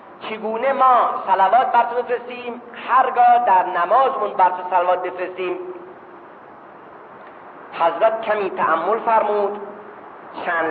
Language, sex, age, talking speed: Persian, male, 40-59, 95 wpm